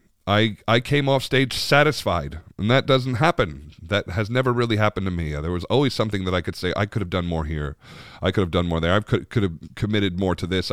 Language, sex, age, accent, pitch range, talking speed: English, male, 40-59, American, 80-105 Hz, 250 wpm